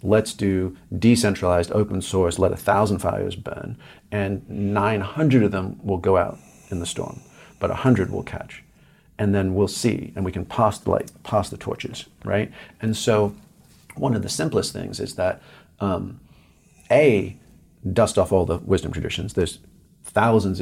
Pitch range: 90-105 Hz